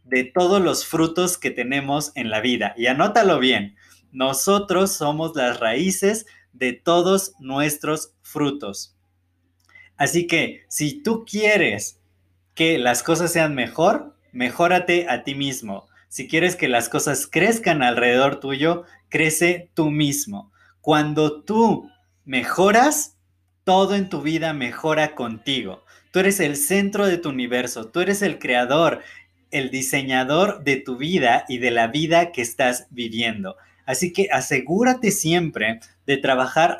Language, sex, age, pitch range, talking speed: Spanish, male, 20-39, 125-175 Hz, 135 wpm